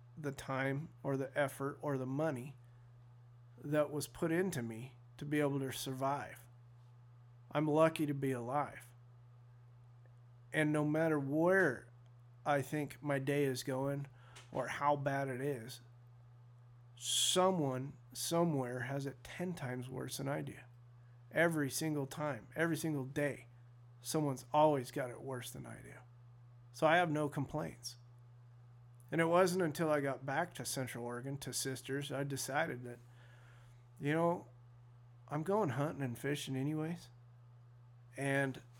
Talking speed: 140 wpm